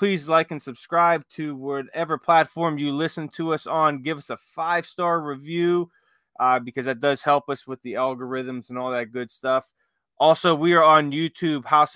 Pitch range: 130-160 Hz